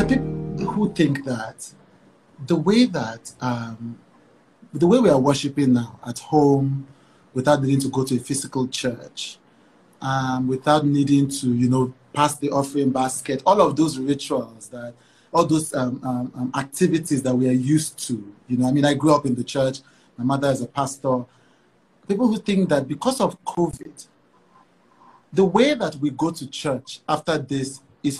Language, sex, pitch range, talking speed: English, male, 130-160 Hz, 170 wpm